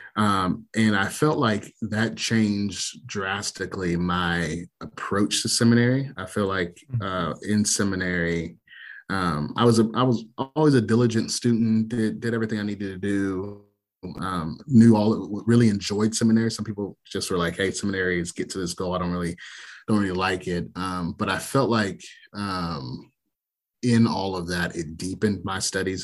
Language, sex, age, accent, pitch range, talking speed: English, male, 30-49, American, 85-110 Hz, 170 wpm